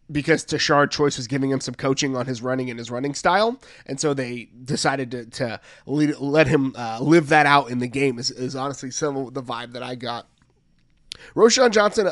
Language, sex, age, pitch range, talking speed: English, male, 30-49, 130-160 Hz, 210 wpm